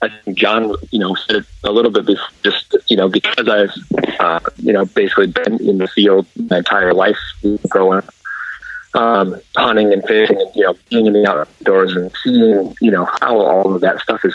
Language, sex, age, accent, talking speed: English, male, 30-49, American, 205 wpm